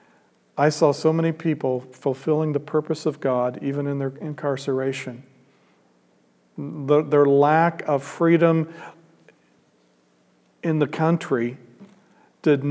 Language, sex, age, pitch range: English, male, 50-69, 130-160 Hz